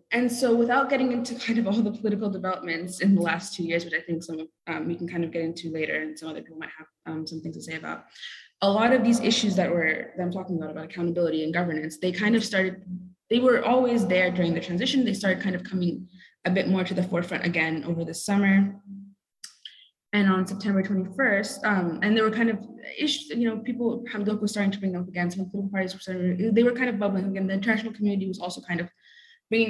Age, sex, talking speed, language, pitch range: 20-39, female, 245 wpm, English, 175-210 Hz